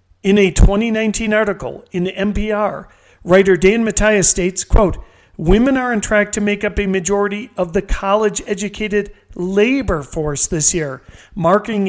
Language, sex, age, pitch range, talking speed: English, male, 40-59, 175-210 Hz, 145 wpm